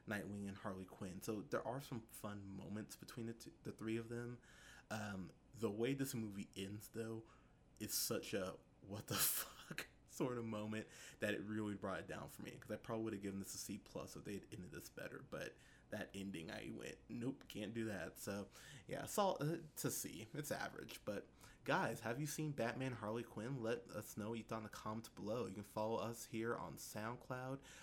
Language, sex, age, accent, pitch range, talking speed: English, male, 20-39, American, 105-120 Hz, 215 wpm